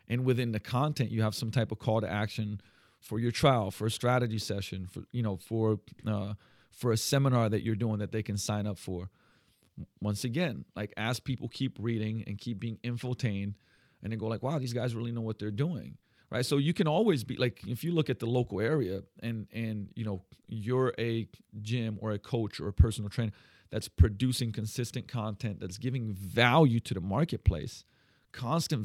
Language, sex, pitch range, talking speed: English, male, 105-125 Hz, 205 wpm